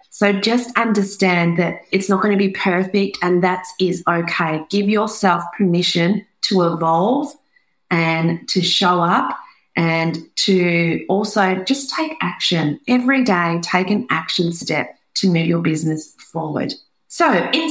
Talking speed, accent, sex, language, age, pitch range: 140 wpm, Australian, female, English, 40-59, 175-225 Hz